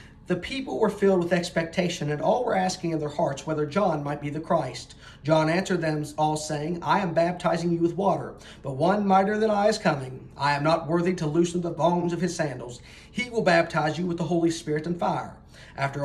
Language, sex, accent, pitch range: English, male, American, 140-175 Hz